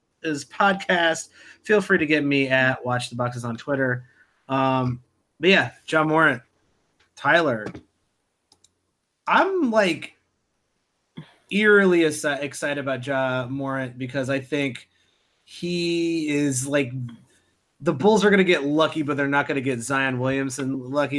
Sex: male